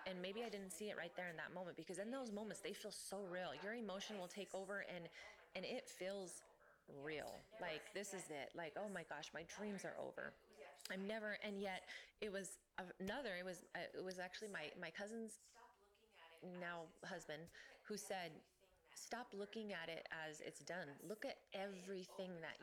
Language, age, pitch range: English, 20-39, 165-215 Hz